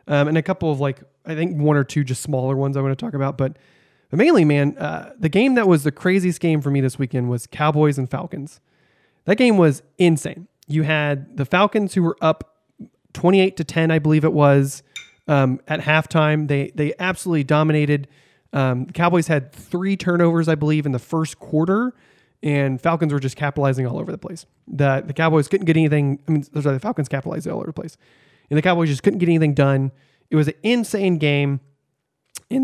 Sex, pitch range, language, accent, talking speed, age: male, 140-175 Hz, English, American, 210 wpm, 30-49